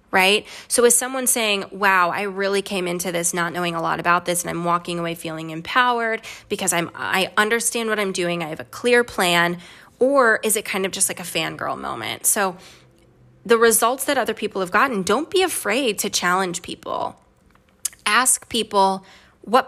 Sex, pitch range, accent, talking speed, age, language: female, 175-235 Hz, American, 190 wpm, 20-39, English